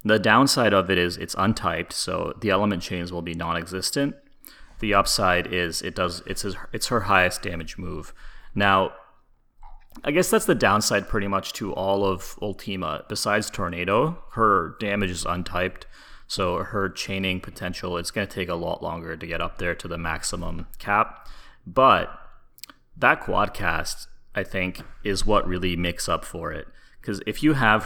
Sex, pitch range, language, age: male, 90-110 Hz, English, 30-49